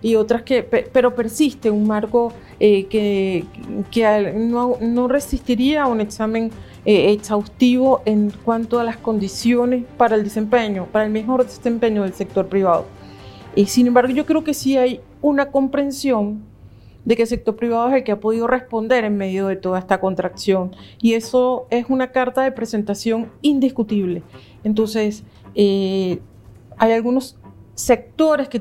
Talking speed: 155 wpm